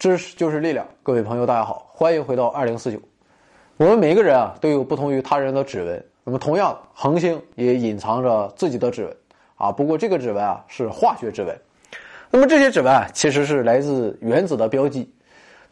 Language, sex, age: Chinese, male, 20-39